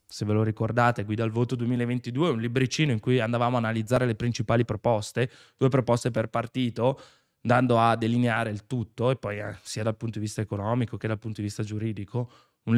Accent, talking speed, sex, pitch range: native, 200 wpm, male, 110-145 Hz